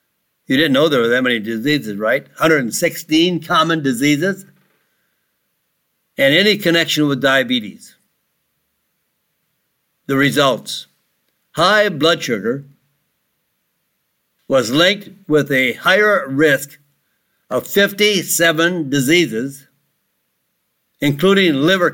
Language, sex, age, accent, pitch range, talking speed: English, male, 60-79, American, 140-180 Hz, 90 wpm